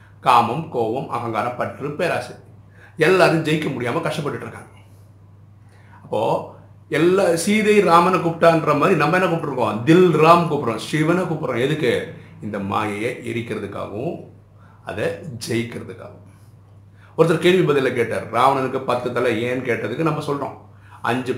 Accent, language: native, Tamil